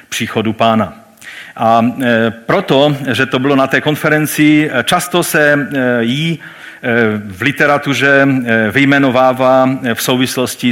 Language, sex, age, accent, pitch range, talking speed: Czech, male, 40-59, native, 115-150 Hz, 100 wpm